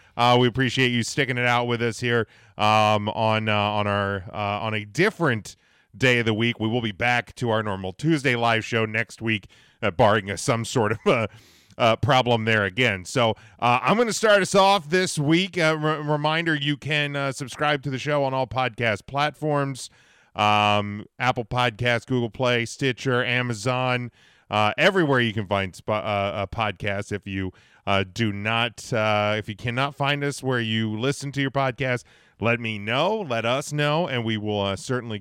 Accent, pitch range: American, 105-140 Hz